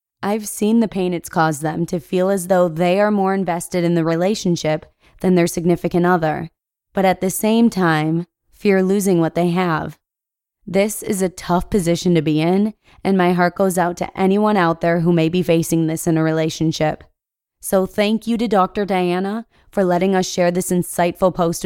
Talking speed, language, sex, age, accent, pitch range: 195 wpm, English, female, 20-39, American, 170-205 Hz